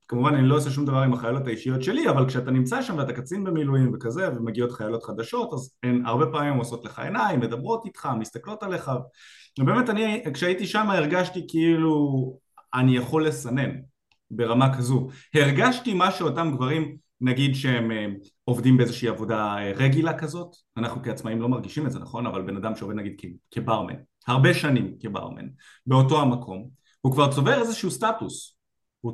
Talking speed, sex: 150 wpm, male